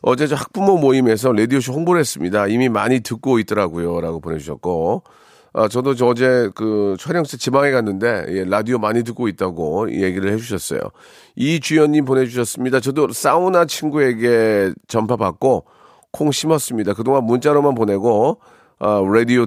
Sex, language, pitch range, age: male, Korean, 105-145 Hz, 40-59